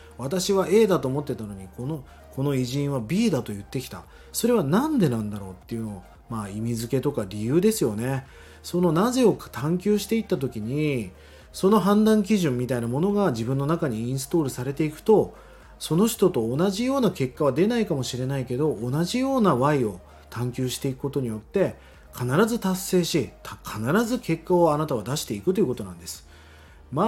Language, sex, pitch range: Japanese, male, 120-195 Hz